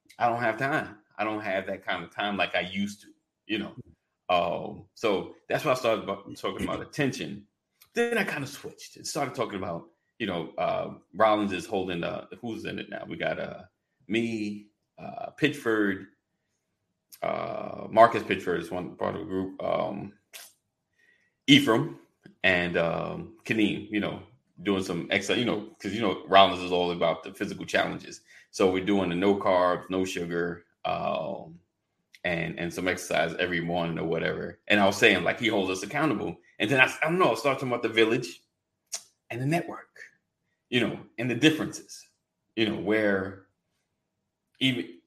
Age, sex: 30-49, male